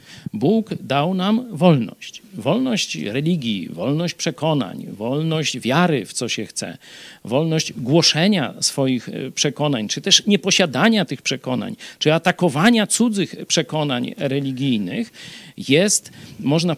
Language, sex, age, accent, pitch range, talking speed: Polish, male, 50-69, native, 150-210 Hz, 105 wpm